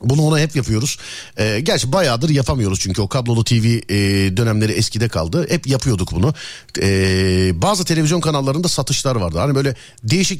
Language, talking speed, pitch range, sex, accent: Turkish, 160 wpm, 125-200 Hz, male, native